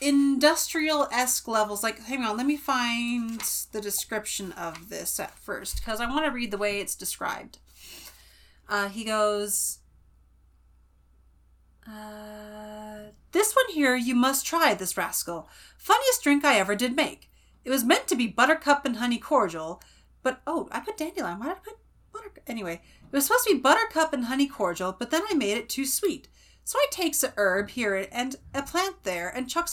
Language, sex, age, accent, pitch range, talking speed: English, female, 30-49, American, 210-305 Hz, 180 wpm